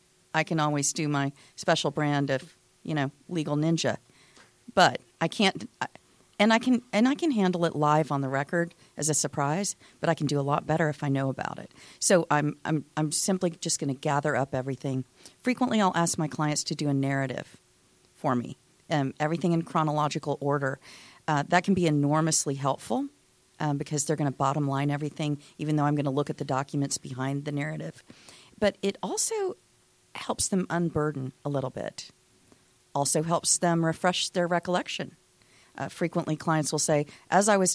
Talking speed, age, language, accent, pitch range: 190 wpm, 40-59, English, American, 140-170 Hz